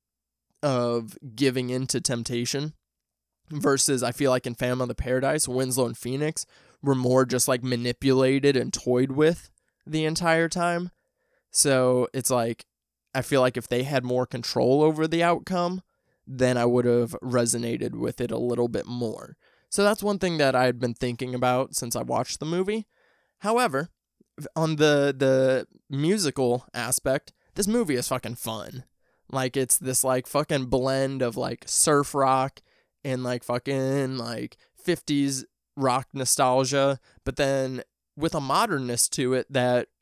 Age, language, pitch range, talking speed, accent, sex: 20-39, English, 125-150 Hz, 155 wpm, American, male